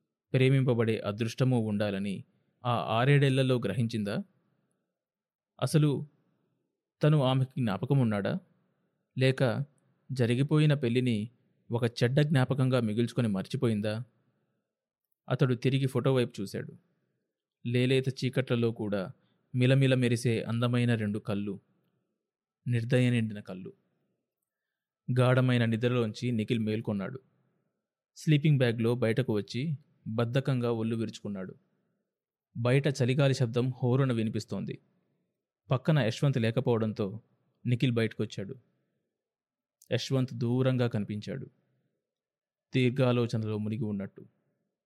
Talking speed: 80 wpm